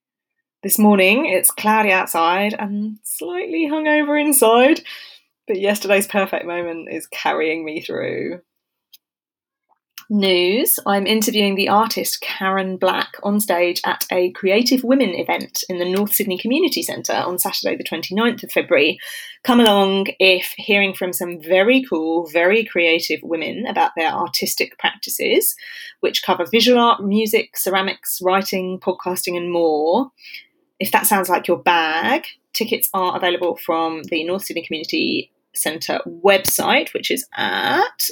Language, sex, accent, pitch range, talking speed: English, female, British, 185-250 Hz, 135 wpm